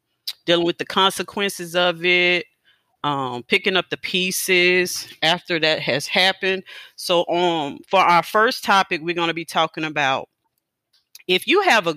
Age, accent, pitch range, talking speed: 40-59, American, 155-190 Hz, 155 wpm